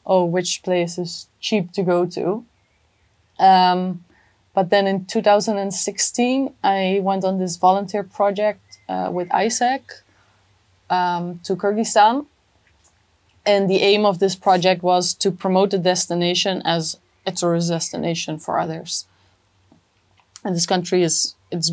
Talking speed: 130 wpm